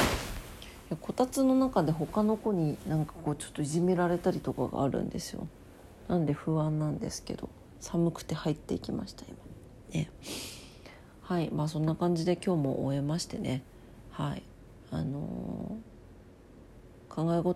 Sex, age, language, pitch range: female, 40-59, Japanese, 115-165 Hz